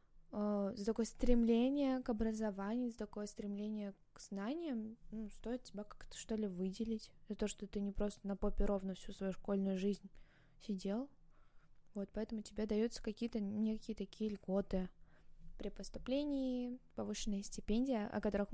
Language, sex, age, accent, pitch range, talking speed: Russian, female, 20-39, native, 200-230 Hz, 140 wpm